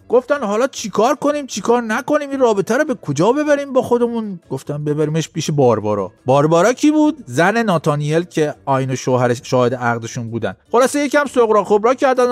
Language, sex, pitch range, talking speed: Persian, male, 175-260 Hz, 170 wpm